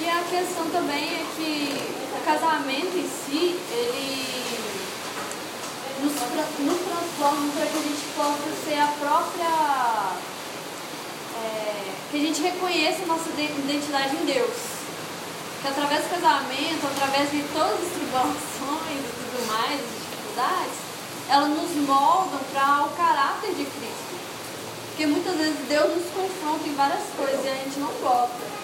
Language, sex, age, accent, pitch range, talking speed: Portuguese, female, 10-29, Brazilian, 275-320 Hz, 145 wpm